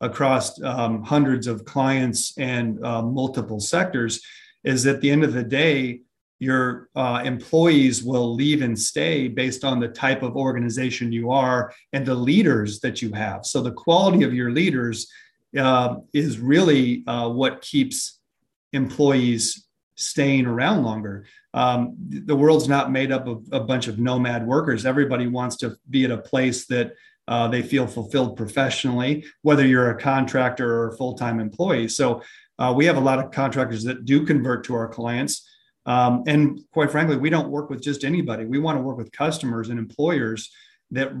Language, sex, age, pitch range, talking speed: English, male, 30-49, 120-140 Hz, 175 wpm